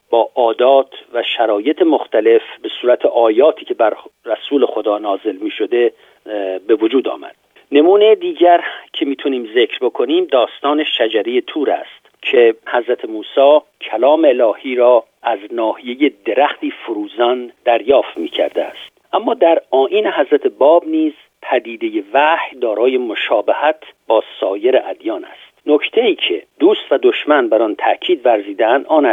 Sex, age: male, 50-69